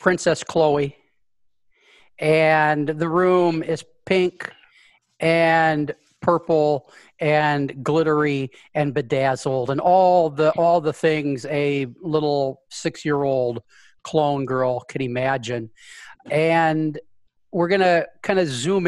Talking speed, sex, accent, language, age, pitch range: 105 wpm, male, American, English, 40-59, 140-175 Hz